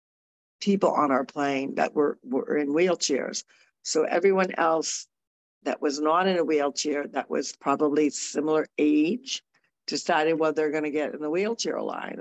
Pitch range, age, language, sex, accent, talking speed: 145-175 Hz, 60-79, English, female, American, 160 wpm